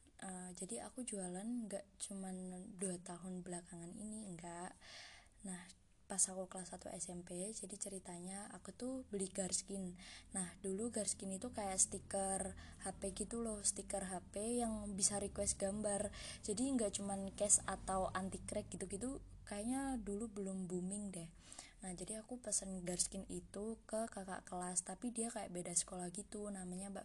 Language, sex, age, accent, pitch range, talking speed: Indonesian, female, 20-39, native, 180-215 Hz, 155 wpm